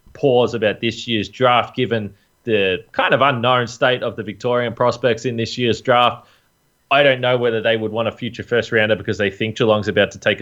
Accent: Australian